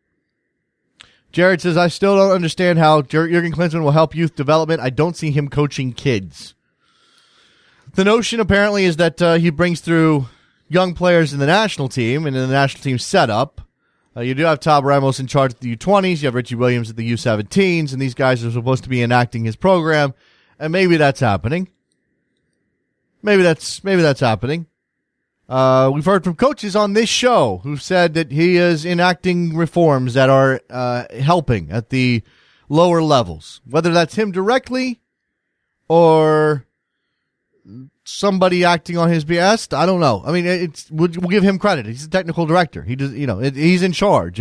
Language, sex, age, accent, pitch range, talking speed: English, male, 30-49, American, 135-175 Hz, 180 wpm